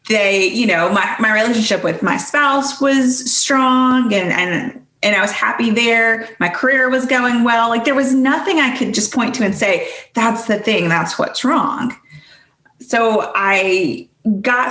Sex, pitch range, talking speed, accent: female, 185-240 Hz, 175 wpm, American